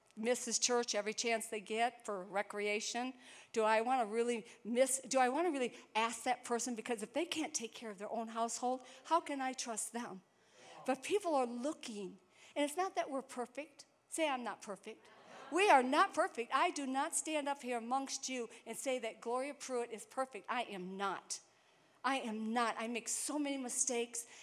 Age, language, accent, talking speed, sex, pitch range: 50-69, English, American, 200 wpm, female, 225-275 Hz